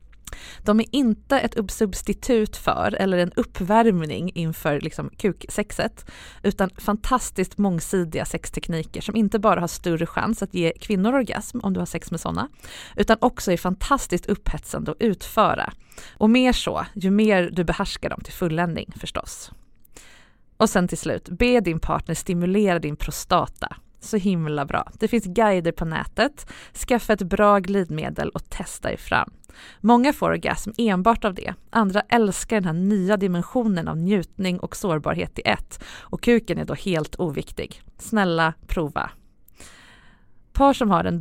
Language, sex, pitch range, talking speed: English, female, 175-225 Hz, 155 wpm